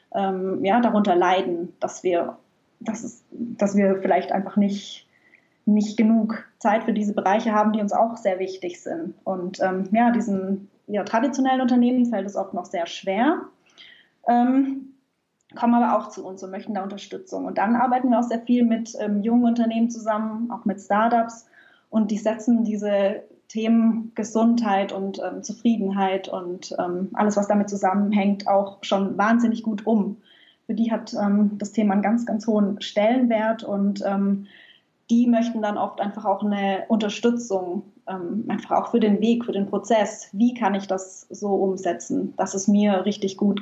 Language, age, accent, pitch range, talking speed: German, 20-39, German, 195-230 Hz, 170 wpm